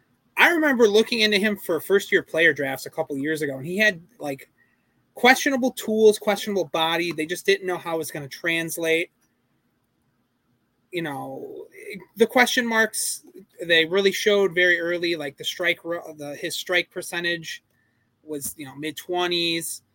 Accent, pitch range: American, 155-215 Hz